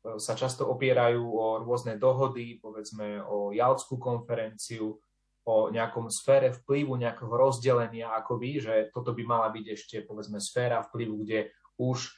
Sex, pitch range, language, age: male, 115-135 Hz, Slovak, 30-49